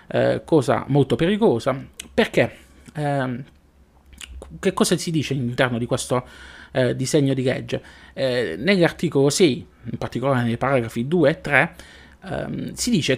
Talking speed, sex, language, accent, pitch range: 135 wpm, male, Italian, native, 120-165 Hz